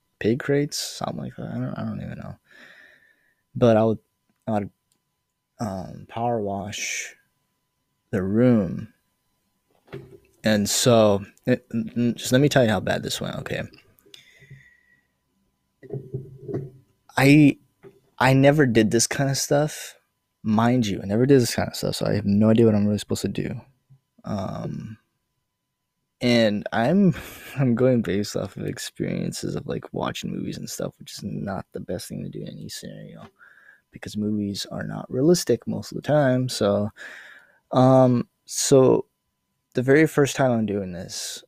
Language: English